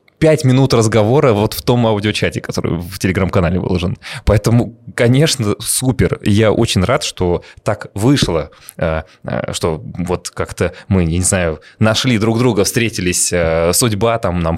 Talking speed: 140 wpm